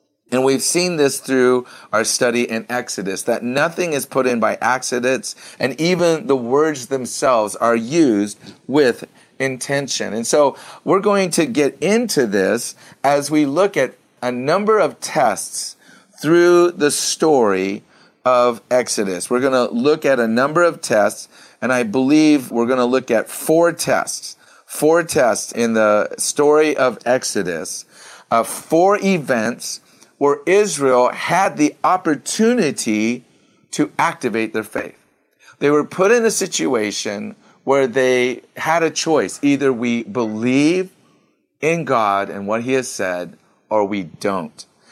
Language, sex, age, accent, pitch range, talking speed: English, male, 40-59, American, 120-160 Hz, 145 wpm